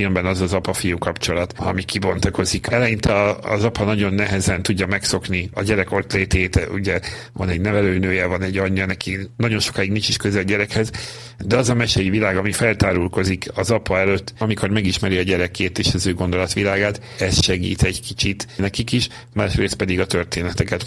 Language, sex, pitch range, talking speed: Hungarian, male, 95-110 Hz, 170 wpm